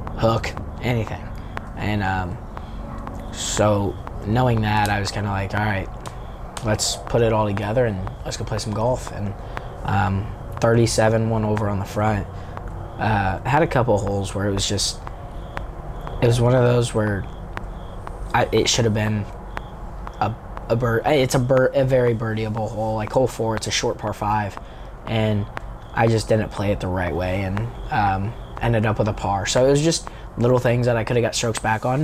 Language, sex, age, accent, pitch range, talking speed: English, male, 20-39, American, 100-120 Hz, 190 wpm